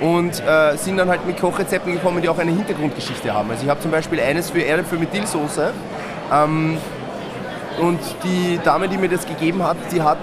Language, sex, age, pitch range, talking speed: German, male, 20-39, 145-170 Hz, 200 wpm